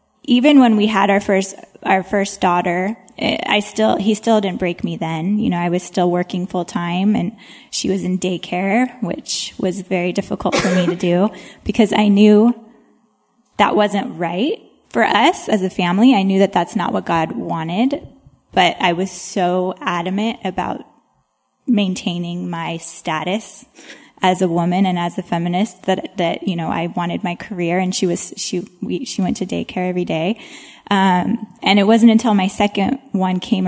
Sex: female